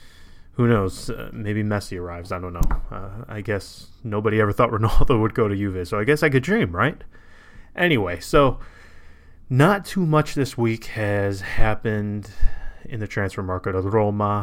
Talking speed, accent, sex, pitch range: 175 wpm, American, male, 95-115 Hz